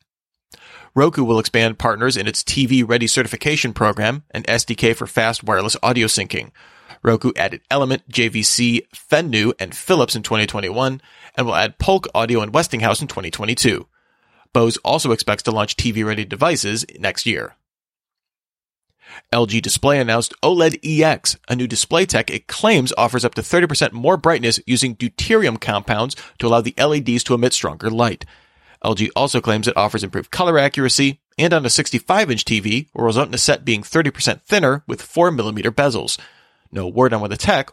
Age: 30-49